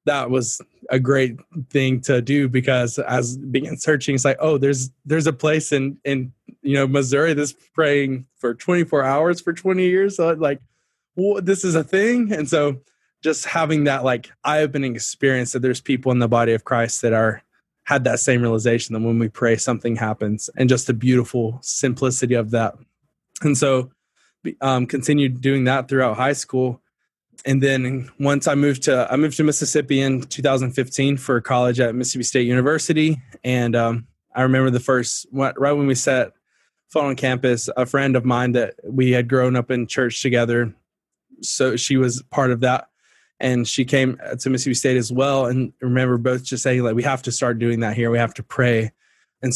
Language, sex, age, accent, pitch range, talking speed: English, male, 20-39, American, 125-140 Hz, 195 wpm